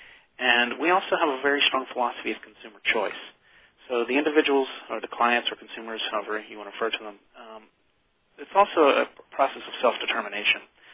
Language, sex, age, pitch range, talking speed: English, male, 40-59, 110-150 Hz, 180 wpm